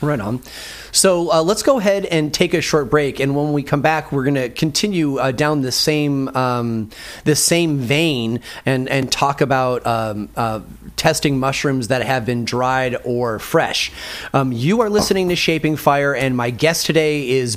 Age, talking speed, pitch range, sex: 30-49, 190 wpm, 135-190 Hz, male